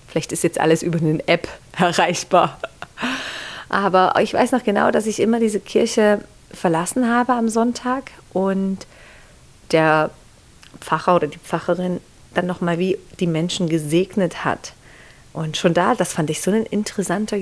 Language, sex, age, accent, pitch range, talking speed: German, female, 40-59, German, 165-210 Hz, 150 wpm